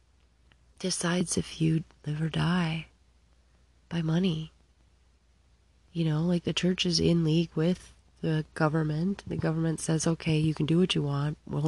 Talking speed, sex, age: 155 wpm, female, 30-49